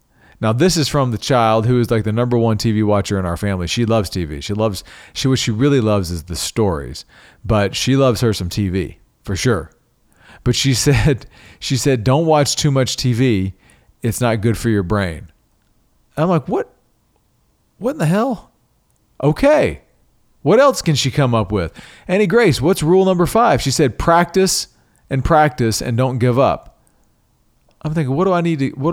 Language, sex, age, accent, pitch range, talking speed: English, male, 40-59, American, 110-145 Hz, 190 wpm